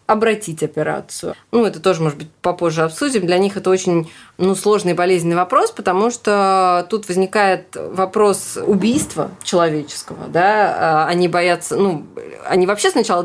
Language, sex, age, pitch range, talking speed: Russian, female, 20-39, 165-215 Hz, 145 wpm